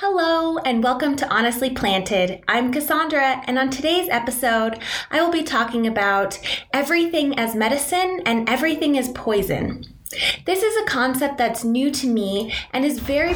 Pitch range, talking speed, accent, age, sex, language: 220-285 Hz, 155 wpm, American, 20-39, female, English